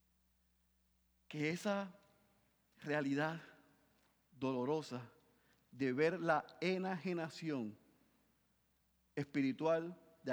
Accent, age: Venezuelan, 40-59